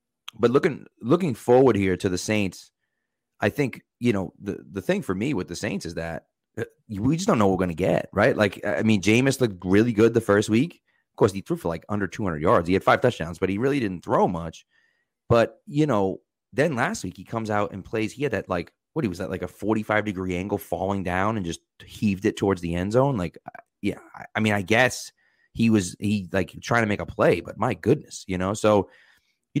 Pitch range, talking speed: 95-115 Hz, 235 wpm